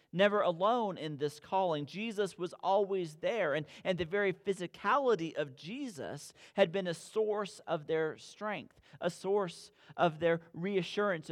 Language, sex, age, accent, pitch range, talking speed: English, male, 40-59, American, 145-190 Hz, 150 wpm